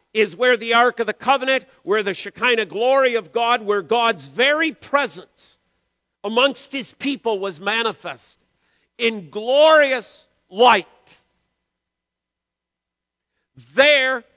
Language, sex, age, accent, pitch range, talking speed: English, male, 50-69, American, 230-285 Hz, 110 wpm